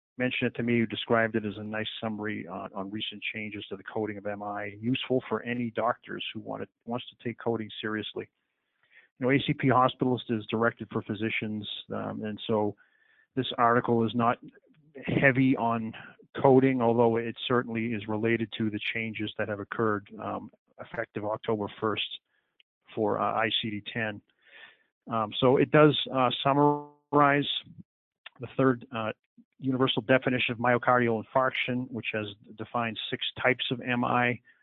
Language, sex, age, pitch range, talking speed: English, male, 40-59, 110-125 Hz, 155 wpm